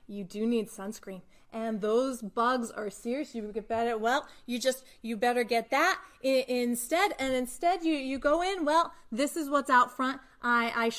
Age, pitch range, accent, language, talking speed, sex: 30-49, 215-255 Hz, American, English, 185 wpm, female